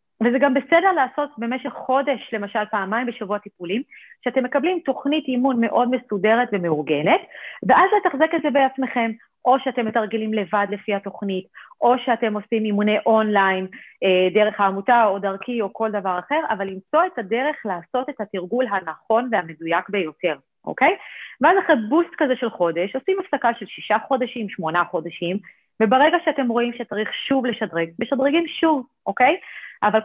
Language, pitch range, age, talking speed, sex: English, 205-270 Hz, 30-49, 150 wpm, female